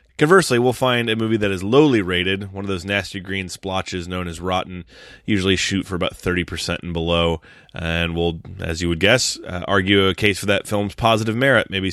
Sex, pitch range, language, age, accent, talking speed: male, 85-110 Hz, English, 30-49, American, 205 wpm